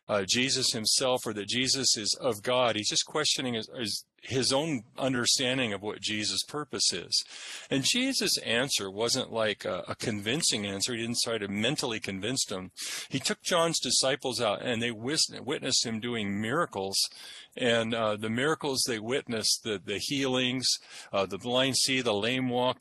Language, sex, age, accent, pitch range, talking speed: English, male, 50-69, American, 105-130 Hz, 170 wpm